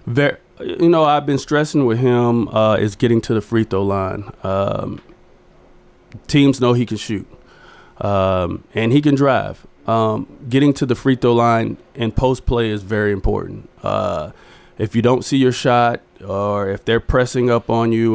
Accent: American